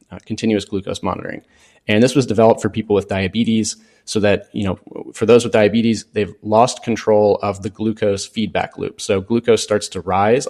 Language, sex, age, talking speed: English, male, 30-49, 190 wpm